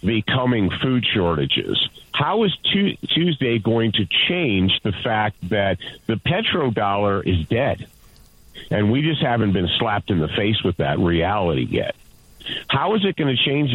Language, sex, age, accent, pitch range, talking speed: English, male, 50-69, American, 105-150 Hz, 155 wpm